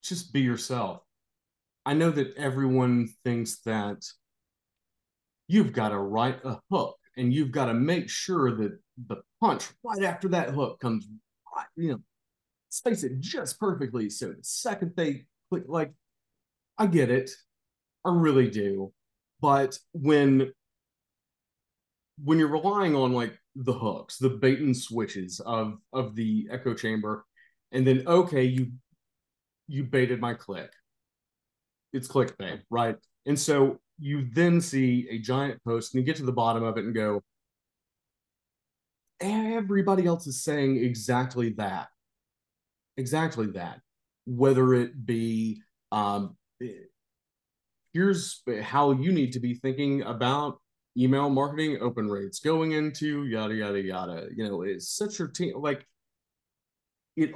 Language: English